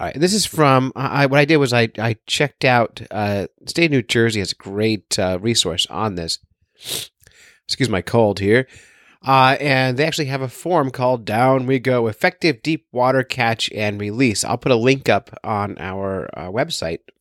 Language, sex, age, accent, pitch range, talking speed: English, male, 30-49, American, 105-135 Hz, 190 wpm